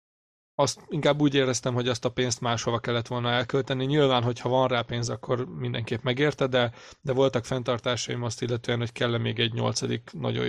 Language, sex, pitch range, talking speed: Hungarian, male, 120-130 Hz, 190 wpm